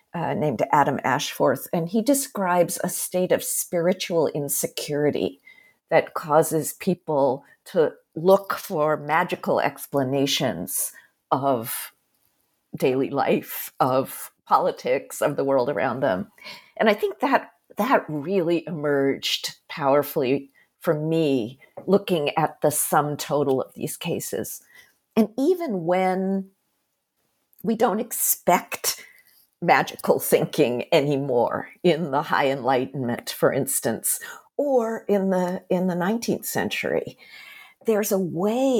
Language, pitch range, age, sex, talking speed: English, 150-225 Hz, 50-69, female, 115 wpm